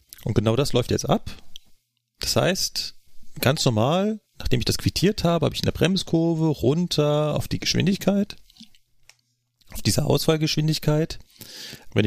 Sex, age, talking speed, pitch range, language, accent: male, 40-59, 140 wpm, 115-155 Hz, German, German